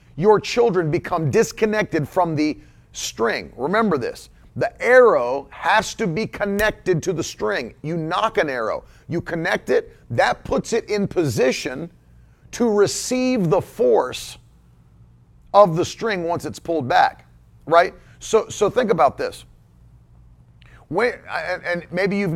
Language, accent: English, American